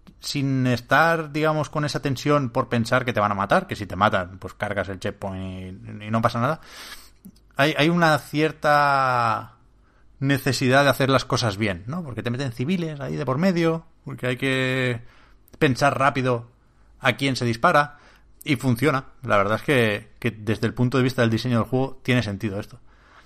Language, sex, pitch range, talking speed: Spanish, male, 105-130 Hz, 190 wpm